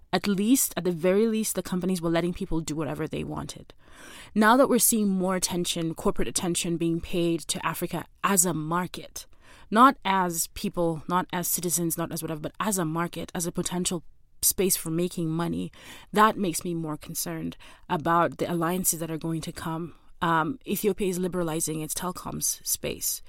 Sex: female